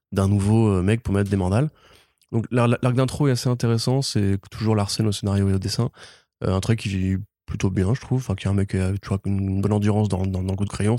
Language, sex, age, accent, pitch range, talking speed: French, male, 20-39, French, 100-115 Hz, 255 wpm